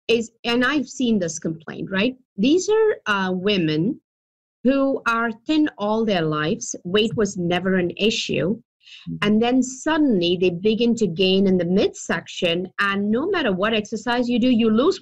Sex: female